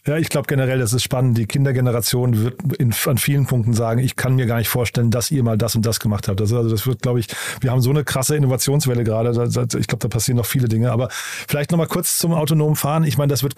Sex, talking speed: male, 265 wpm